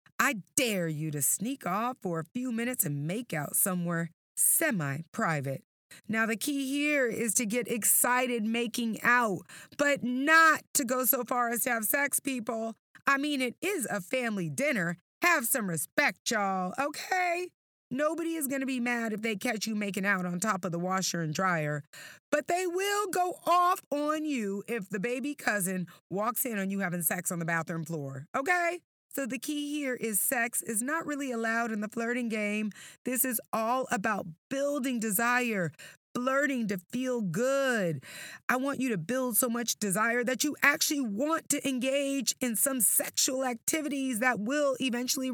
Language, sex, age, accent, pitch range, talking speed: English, female, 30-49, American, 205-280 Hz, 175 wpm